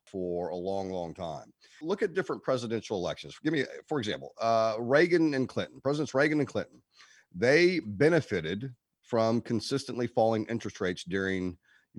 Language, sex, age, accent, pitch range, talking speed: English, male, 40-59, American, 90-120 Hz, 155 wpm